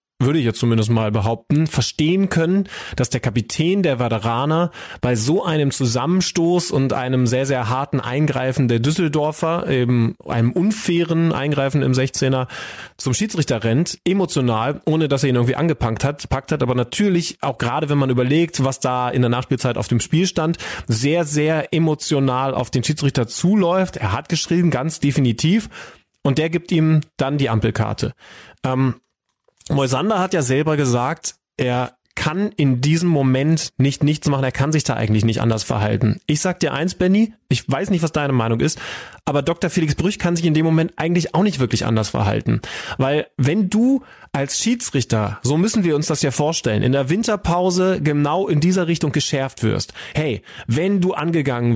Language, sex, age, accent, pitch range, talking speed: German, male, 30-49, German, 130-170 Hz, 175 wpm